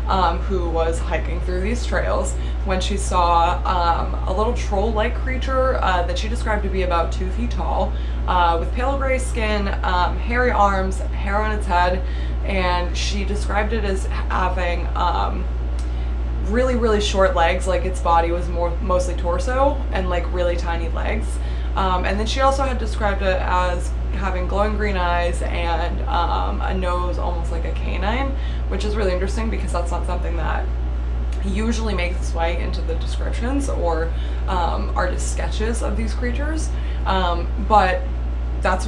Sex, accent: female, American